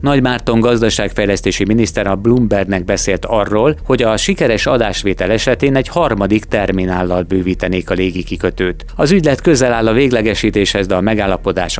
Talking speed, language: 150 wpm, Hungarian